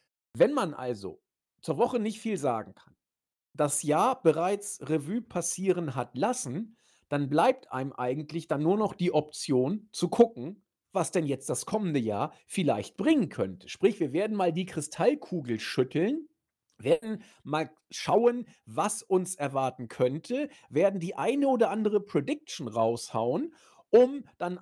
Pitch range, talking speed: 140-205 Hz, 145 wpm